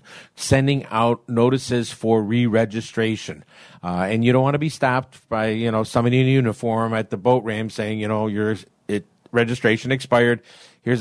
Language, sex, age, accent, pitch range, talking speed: English, male, 50-69, American, 105-130 Hz, 165 wpm